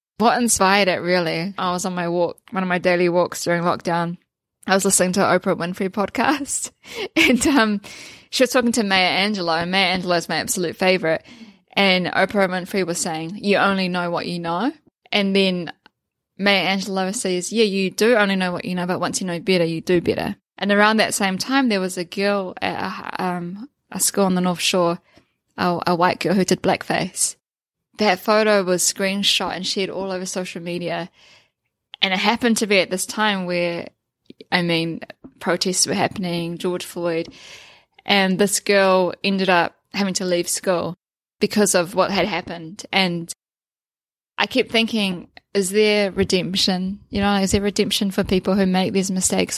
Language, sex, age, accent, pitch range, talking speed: English, female, 10-29, Australian, 180-200 Hz, 185 wpm